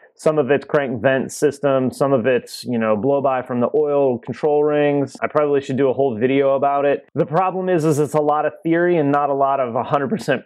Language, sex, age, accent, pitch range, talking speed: English, male, 30-49, American, 120-150 Hz, 240 wpm